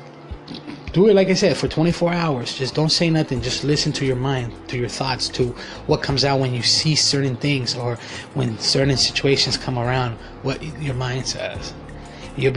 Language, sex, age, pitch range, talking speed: English, male, 20-39, 120-140 Hz, 190 wpm